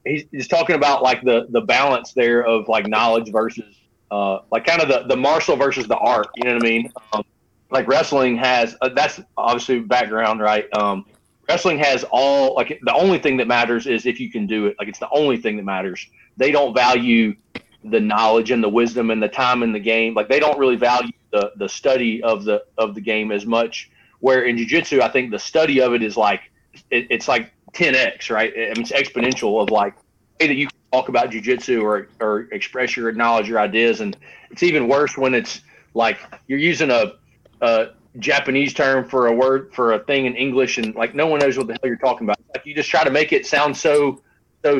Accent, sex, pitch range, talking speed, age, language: American, male, 115-135 Hz, 220 wpm, 30-49, English